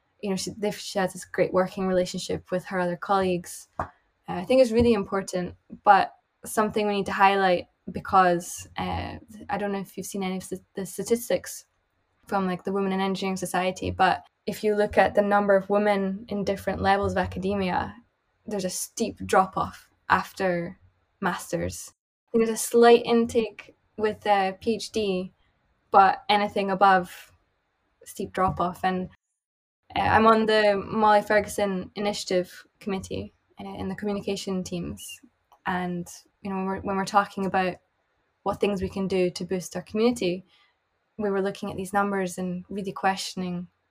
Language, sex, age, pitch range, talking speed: English, female, 10-29, 185-205 Hz, 160 wpm